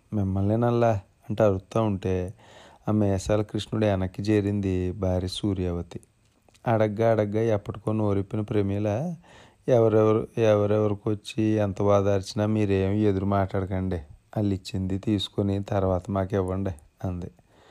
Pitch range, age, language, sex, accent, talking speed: 95-110 Hz, 30-49, Telugu, male, native, 90 wpm